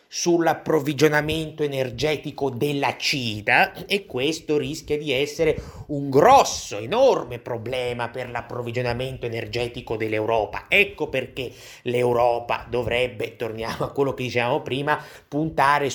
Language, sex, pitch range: Italian, male, 120-165 Hz